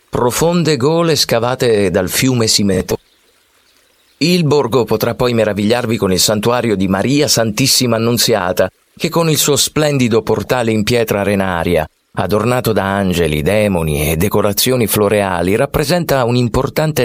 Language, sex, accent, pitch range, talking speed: Italian, male, native, 95-140 Hz, 130 wpm